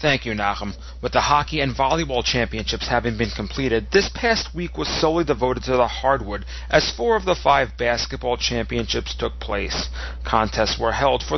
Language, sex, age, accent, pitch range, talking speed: English, male, 40-59, American, 110-140 Hz, 180 wpm